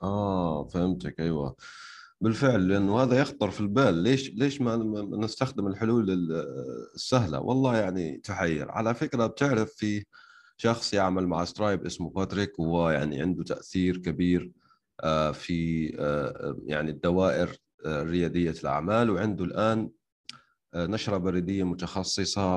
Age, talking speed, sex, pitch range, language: 30-49, 115 wpm, male, 90-115 Hz, Arabic